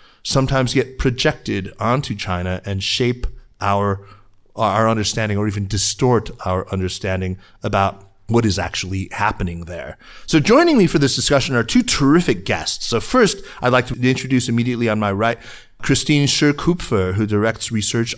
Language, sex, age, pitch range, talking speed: English, male, 30-49, 100-125 Hz, 150 wpm